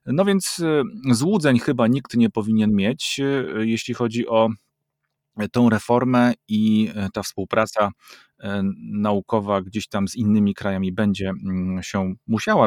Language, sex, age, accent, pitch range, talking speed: Polish, male, 30-49, native, 95-110 Hz, 120 wpm